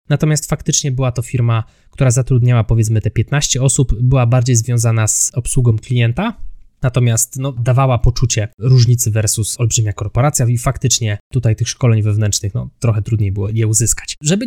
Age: 20-39